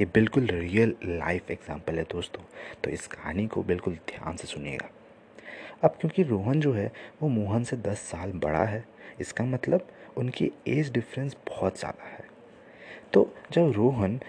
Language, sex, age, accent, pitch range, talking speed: Hindi, male, 30-49, native, 95-125 Hz, 160 wpm